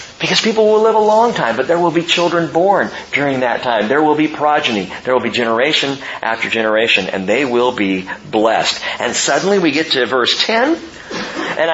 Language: English